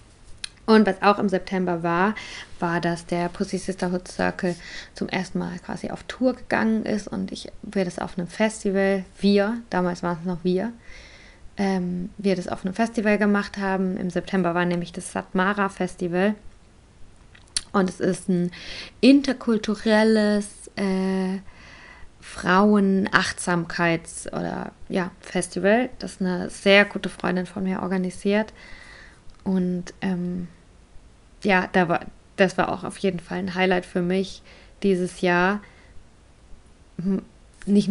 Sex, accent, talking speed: female, German, 130 wpm